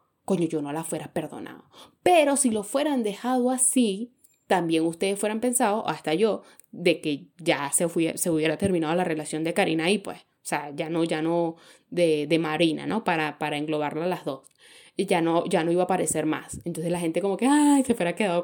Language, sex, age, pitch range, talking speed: Spanish, female, 10-29, 170-255 Hz, 215 wpm